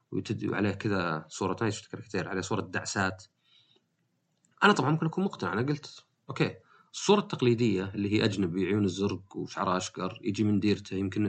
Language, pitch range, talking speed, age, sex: Arabic, 95-120 Hz, 155 wpm, 30-49, male